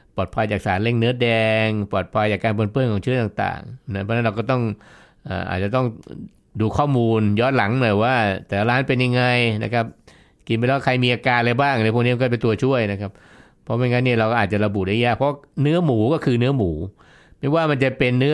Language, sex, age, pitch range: Thai, male, 60-79, 105-130 Hz